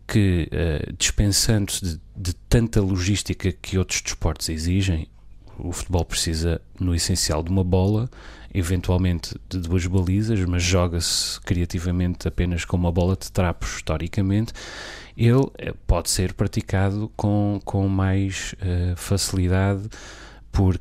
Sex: male